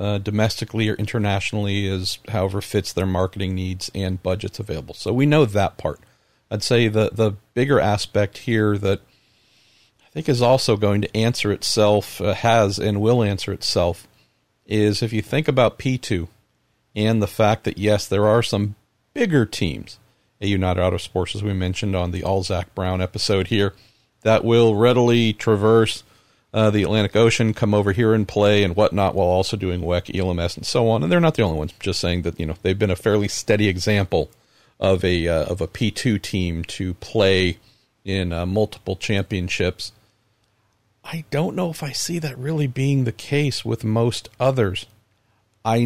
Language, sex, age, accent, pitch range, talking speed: English, male, 50-69, American, 100-115 Hz, 180 wpm